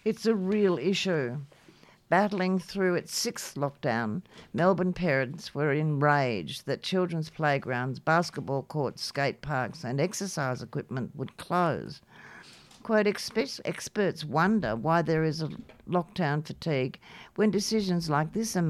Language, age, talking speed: English, 60-79, 125 wpm